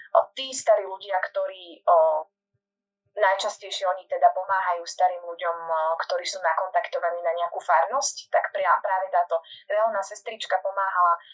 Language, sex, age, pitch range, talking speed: Slovak, female, 20-39, 180-235 Hz, 125 wpm